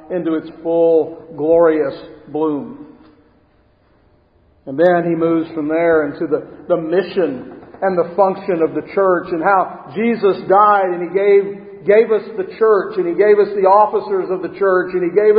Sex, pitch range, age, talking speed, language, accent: male, 145-185 Hz, 50-69, 170 wpm, English, American